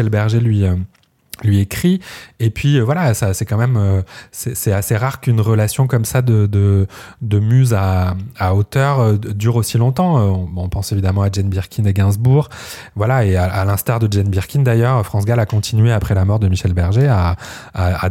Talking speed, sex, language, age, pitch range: 195 wpm, male, French, 20-39, 95-120 Hz